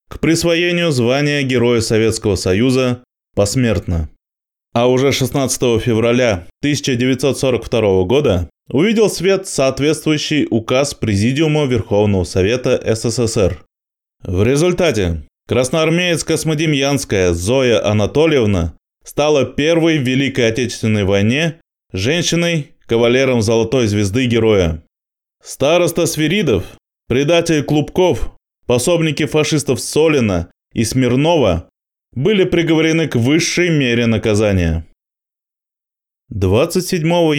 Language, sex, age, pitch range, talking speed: Russian, male, 20-39, 105-155 Hz, 85 wpm